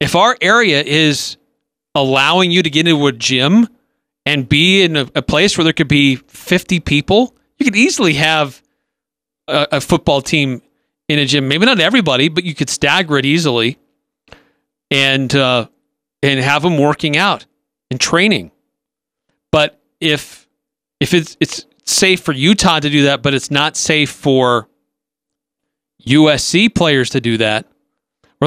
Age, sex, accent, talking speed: 40-59, male, American, 155 wpm